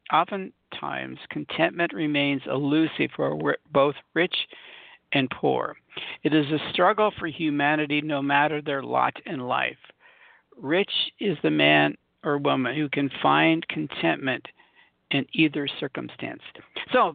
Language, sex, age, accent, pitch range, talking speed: English, male, 60-79, American, 140-170 Hz, 125 wpm